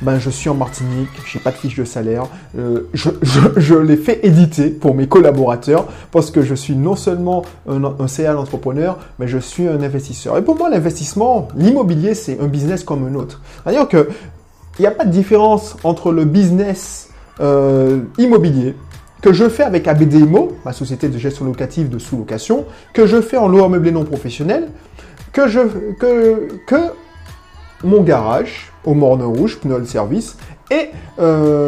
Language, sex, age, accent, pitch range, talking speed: French, male, 20-39, French, 135-195 Hz, 175 wpm